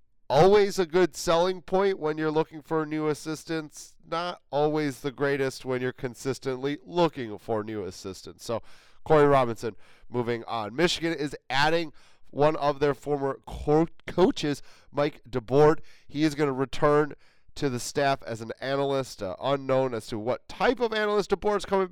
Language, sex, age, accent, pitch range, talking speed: English, male, 30-49, American, 130-155 Hz, 160 wpm